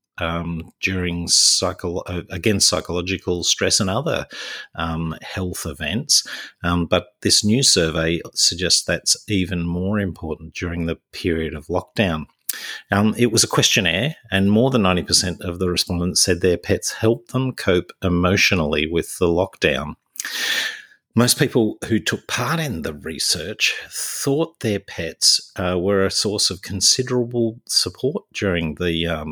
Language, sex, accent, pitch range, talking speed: English, male, Australian, 85-110 Hz, 145 wpm